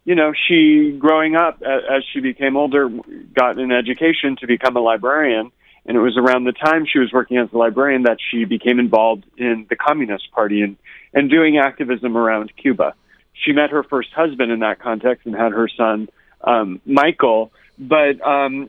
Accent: American